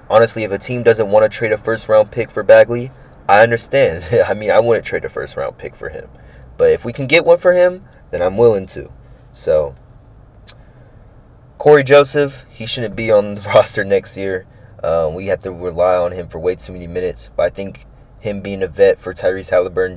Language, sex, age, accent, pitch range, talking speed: English, male, 20-39, American, 90-145 Hz, 210 wpm